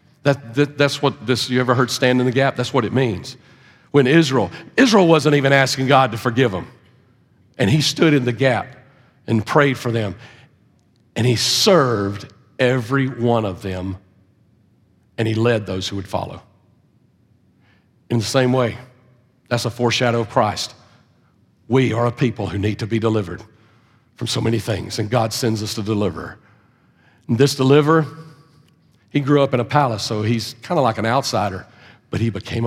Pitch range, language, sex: 115-150 Hz, English, male